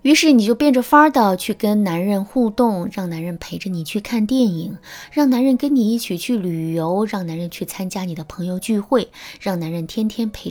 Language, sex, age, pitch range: Chinese, female, 20-39, 170-255 Hz